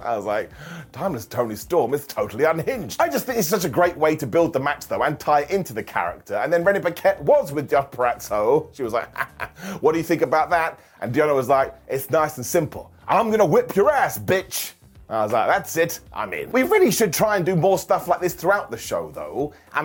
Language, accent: English, British